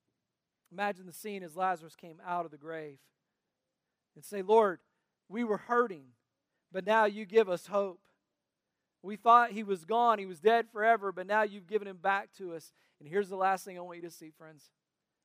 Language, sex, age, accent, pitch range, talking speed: English, male, 40-59, American, 170-205 Hz, 195 wpm